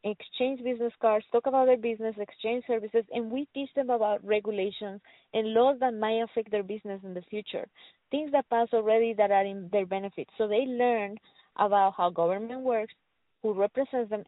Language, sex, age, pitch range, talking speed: English, female, 20-39, 200-235 Hz, 185 wpm